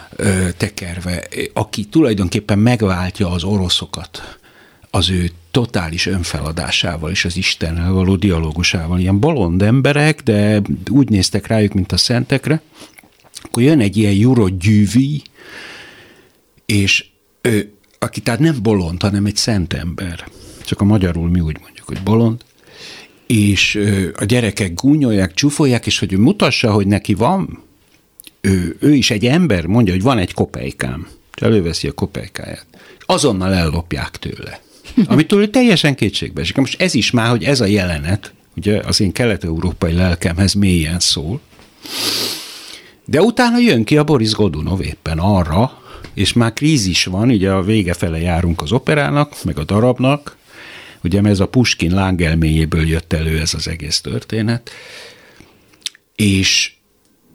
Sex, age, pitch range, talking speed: male, 60-79, 90-115 Hz, 140 wpm